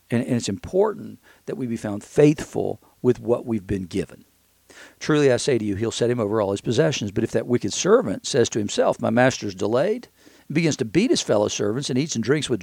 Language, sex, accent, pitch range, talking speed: English, male, American, 110-145 Hz, 230 wpm